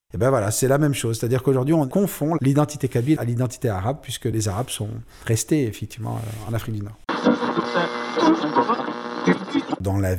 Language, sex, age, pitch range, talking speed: French, male, 40-59, 110-145 Hz, 165 wpm